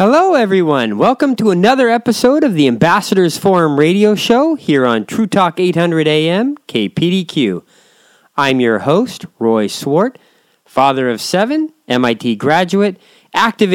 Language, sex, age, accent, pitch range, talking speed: English, male, 40-59, American, 130-185 Hz, 130 wpm